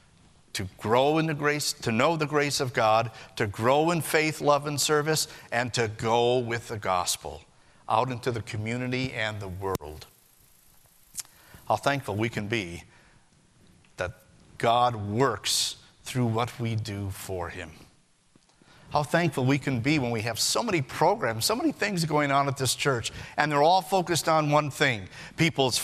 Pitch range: 115-155 Hz